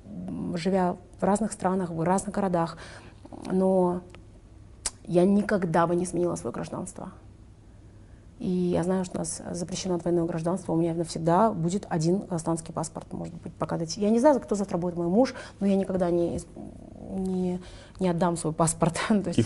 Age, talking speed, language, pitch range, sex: 30-49, 160 wpm, Russian, 170-210 Hz, female